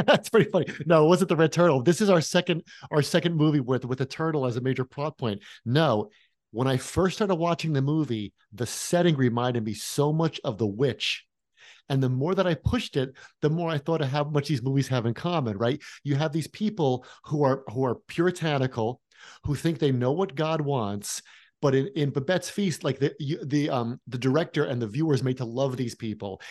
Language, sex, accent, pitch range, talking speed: English, male, American, 130-170 Hz, 220 wpm